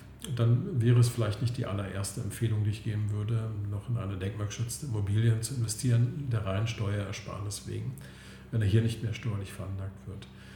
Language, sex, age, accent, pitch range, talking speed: German, male, 50-69, German, 105-120 Hz, 180 wpm